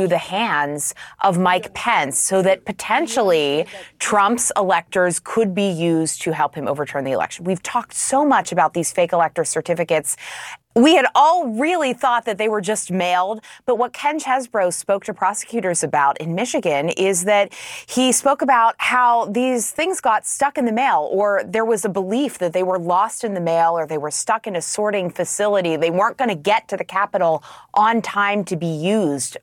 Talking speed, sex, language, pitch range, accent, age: 190 wpm, female, English, 165-230 Hz, American, 30-49